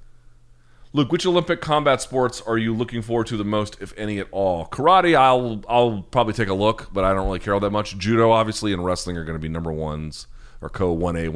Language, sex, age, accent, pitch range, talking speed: English, male, 30-49, American, 90-115 Hz, 225 wpm